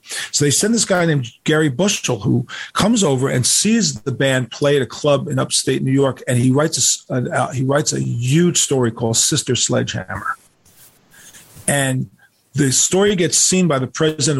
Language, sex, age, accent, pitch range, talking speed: English, male, 40-59, American, 125-145 Hz, 185 wpm